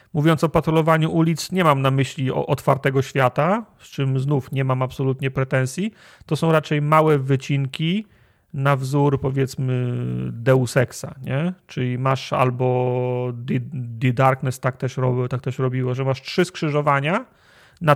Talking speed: 135 wpm